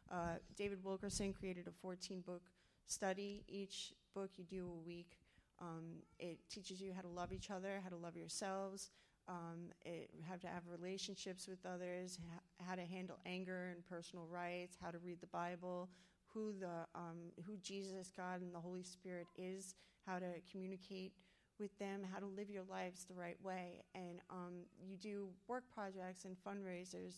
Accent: American